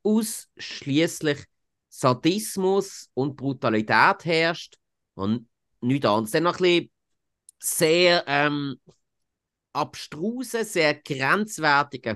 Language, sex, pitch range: German, male, 110-165 Hz